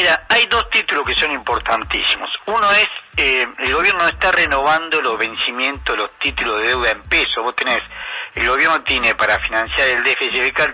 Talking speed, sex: 180 wpm, male